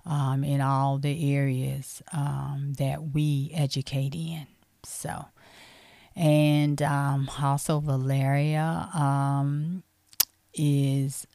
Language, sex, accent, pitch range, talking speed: English, female, American, 140-150 Hz, 90 wpm